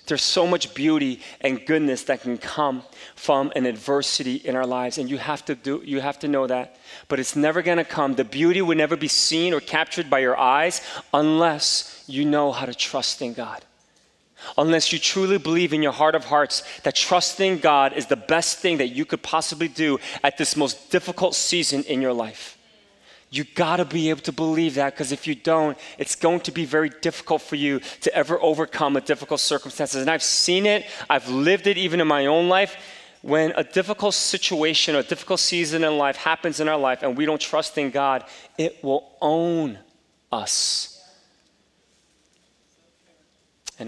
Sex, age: male, 30-49